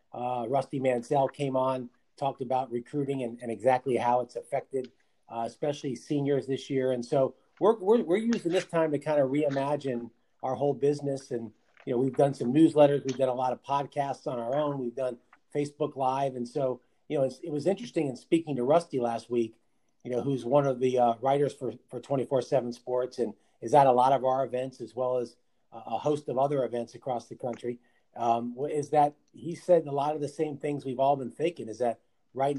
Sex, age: male, 40-59